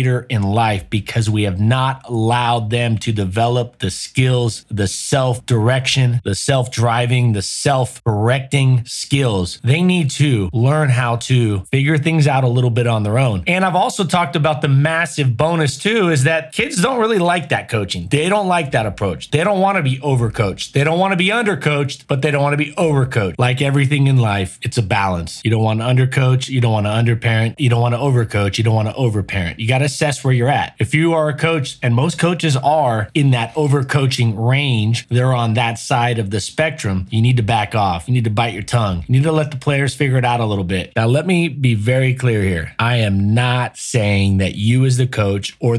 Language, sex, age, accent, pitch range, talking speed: English, male, 30-49, American, 110-145 Hz, 225 wpm